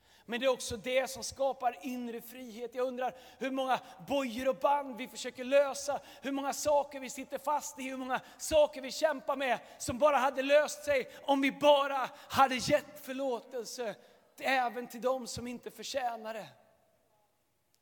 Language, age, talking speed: Swedish, 30-49, 165 wpm